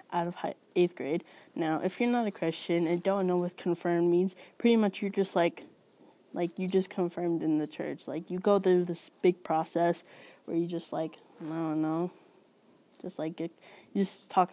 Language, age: English, 20-39